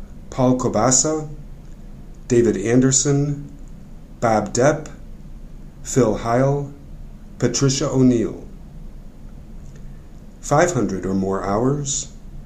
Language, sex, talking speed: English, male, 65 wpm